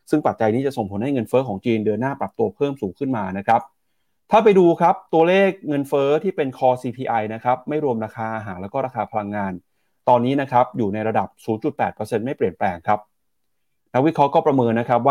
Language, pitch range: Thai, 115-150 Hz